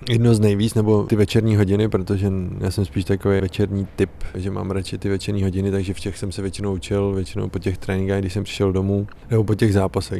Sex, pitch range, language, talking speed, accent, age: male, 95-105 Hz, Czech, 230 wpm, native, 20-39